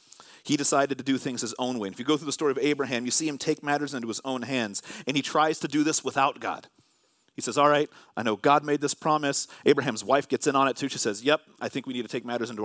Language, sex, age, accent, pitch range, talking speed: English, male, 30-49, American, 120-150 Hz, 295 wpm